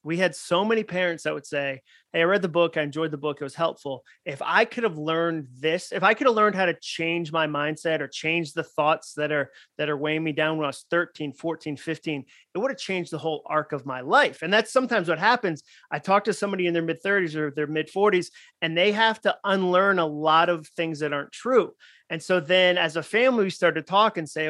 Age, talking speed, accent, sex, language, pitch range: 30-49, 255 wpm, American, male, English, 150-185 Hz